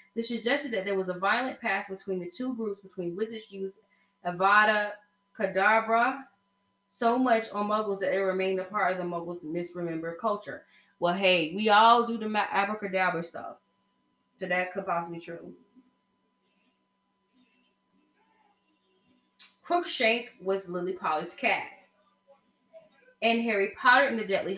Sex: female